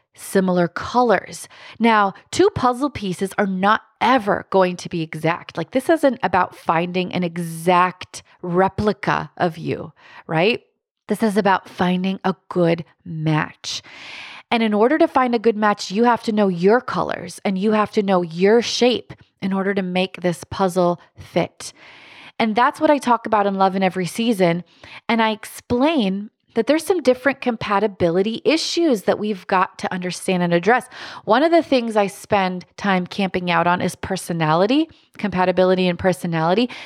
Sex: female